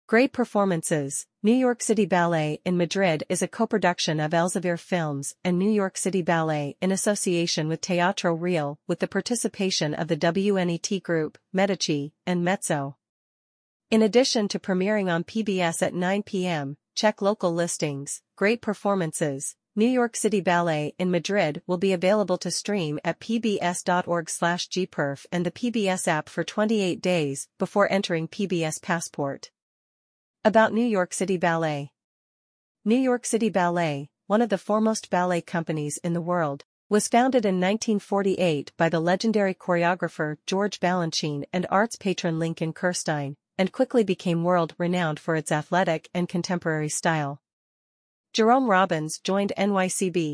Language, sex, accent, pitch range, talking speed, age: English, female, American, 160-200 Hz, 145 wpm, 40-59